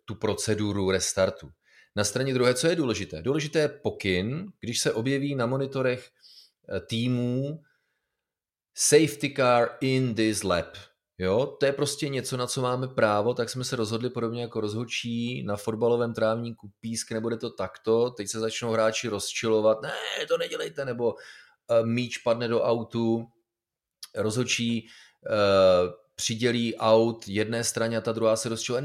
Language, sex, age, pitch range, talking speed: Czech, male, 30-49, 110-130 Hz, 140 wpm